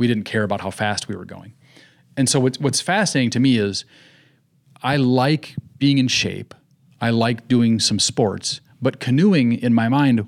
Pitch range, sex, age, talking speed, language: 105-135 Hz, male, 30-49, 185 wpm, English